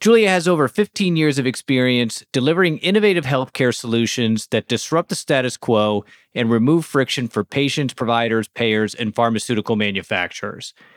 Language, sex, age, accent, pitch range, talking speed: English, male, 30-49, American, 115-145 Hz, 140 wpm